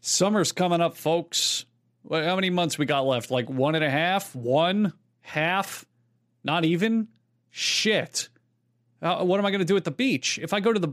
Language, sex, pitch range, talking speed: English, male, 130-195 Hz, 190 wpm